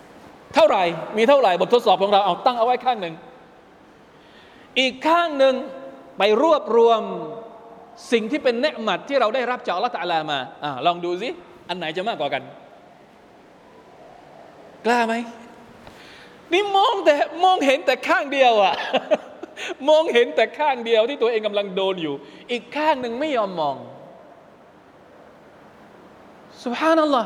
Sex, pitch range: male, 215-290 Hz